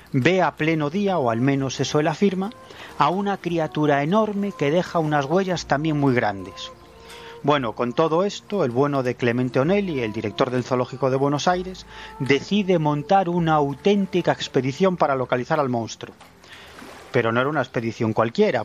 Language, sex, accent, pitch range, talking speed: Spanish, male, Spanish, 125-170 Hz, 165 wpm